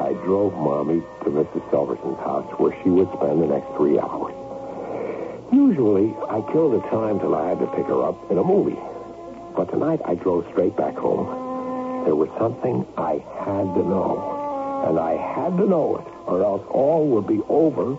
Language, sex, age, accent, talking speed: English, male, 60-79, American, 185 wpm